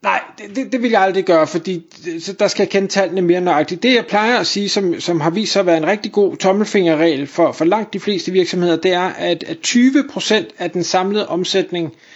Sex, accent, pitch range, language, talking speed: male, native, 170-215 Hz, Danish, 230 wpm